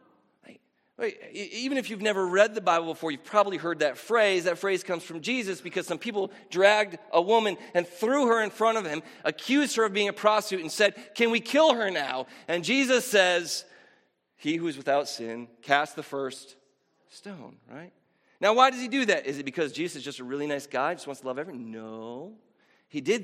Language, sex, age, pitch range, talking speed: English, male, 40-59, 170-240 Hz, 210 wpm